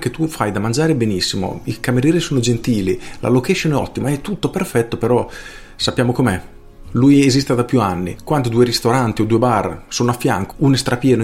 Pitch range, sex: 105-140 Hz, male